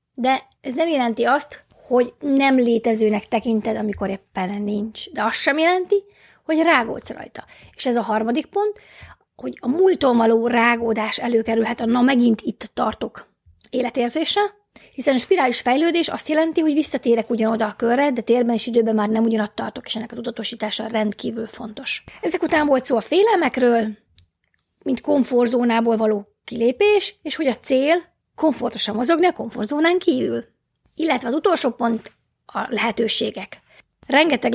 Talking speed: 150 wpm